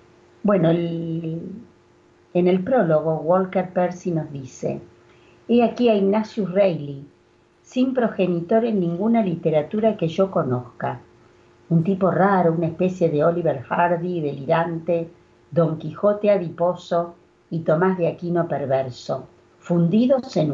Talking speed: 115 wpm